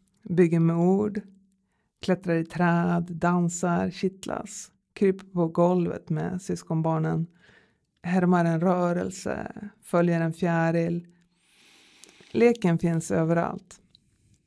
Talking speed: 90 wpm